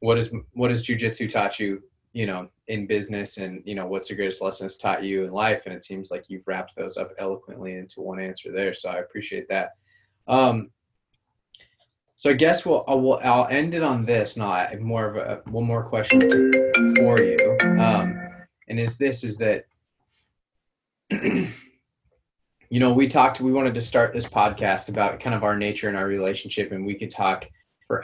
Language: English